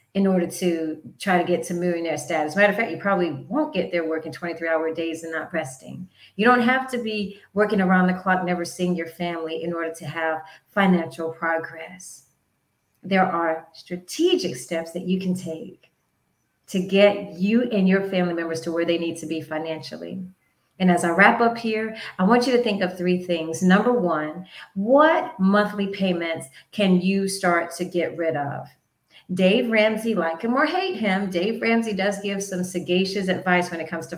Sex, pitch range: female, 170-200 Hz